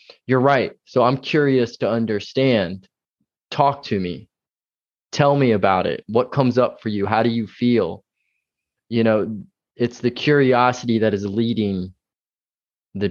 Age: 20-39